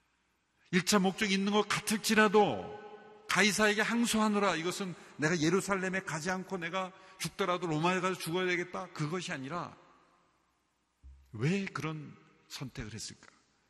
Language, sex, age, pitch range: Korean, male, 50-69, 125-175 Hz